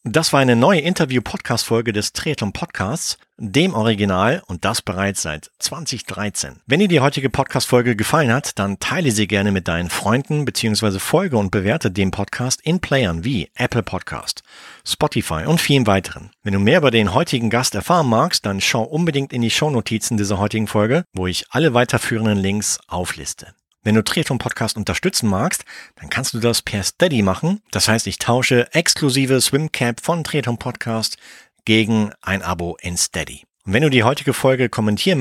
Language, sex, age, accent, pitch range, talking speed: German, male, 40-59, German, 100-135 Hz, 170 wpm